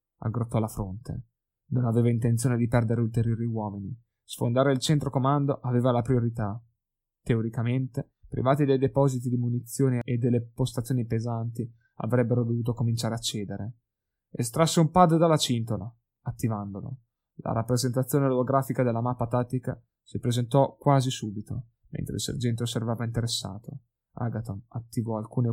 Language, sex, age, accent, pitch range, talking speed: Italian, male, 20-39, native, 115-130 Hz, 130 wpm